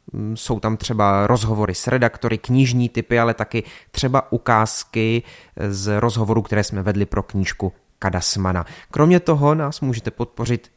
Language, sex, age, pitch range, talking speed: Czech, male, 30-49, 100-125 Hz, 140 wpm